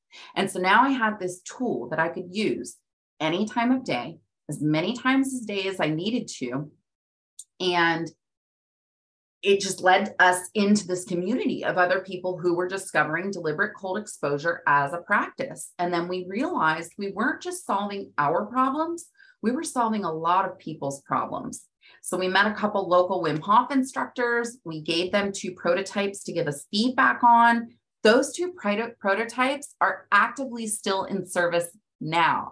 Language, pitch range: English, 175-235 Hz